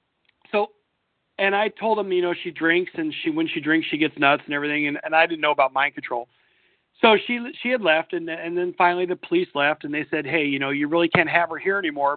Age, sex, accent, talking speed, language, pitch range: 40-59, male, American, 255 wpm, English, 165-230 Hz